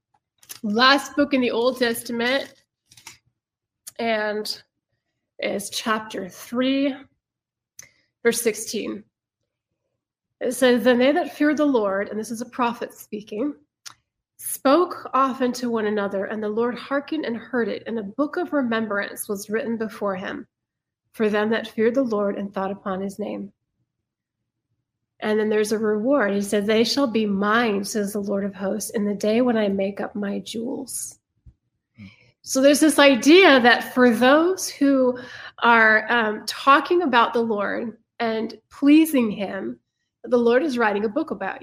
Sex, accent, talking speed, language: female, American, 155 wpm, English